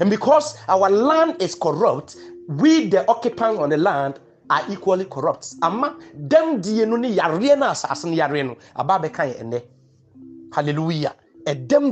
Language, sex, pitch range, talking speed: English, male, 150-245 Hz, 135 wpm